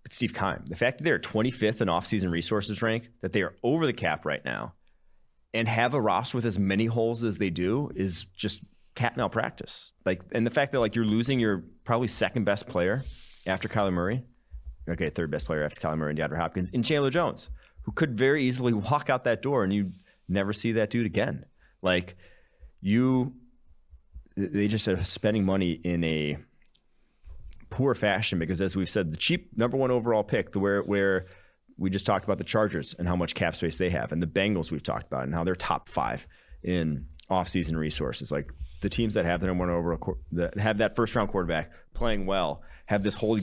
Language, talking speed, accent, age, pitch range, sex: English, 210 wpm, American, 30-49, 85-115 Hz, male